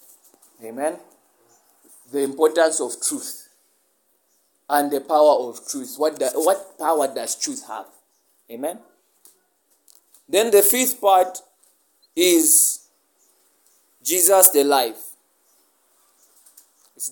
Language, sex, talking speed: English, male, 95 wpm